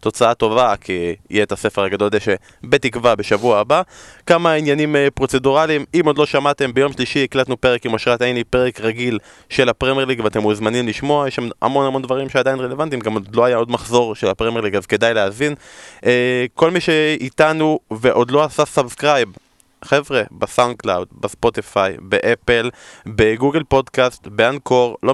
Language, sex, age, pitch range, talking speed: Hebrew, male, 20-39, 115-140 Hz, 160 wpm